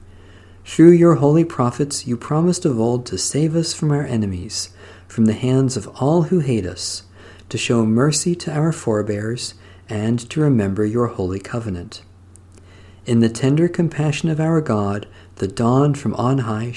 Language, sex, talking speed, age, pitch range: English, male, 165 wpm, 50-69, 95-140 Hz